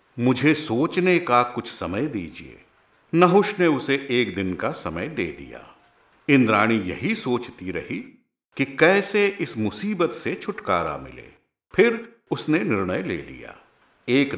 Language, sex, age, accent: Hindi, male, 50-69, native